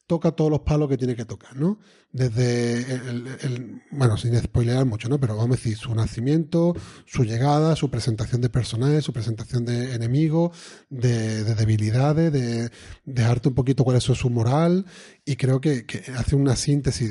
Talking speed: 180 wpm